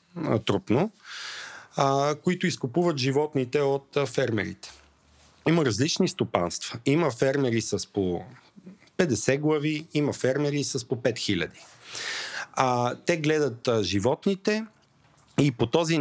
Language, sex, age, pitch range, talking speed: Bulgarian, male, 40-59, 120-155 Hz, 110 wpm